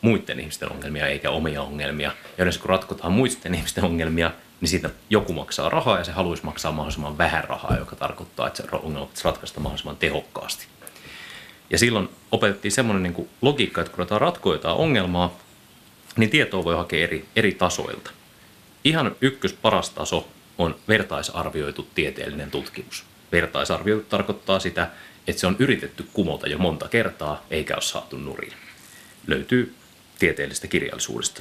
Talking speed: 145 wpm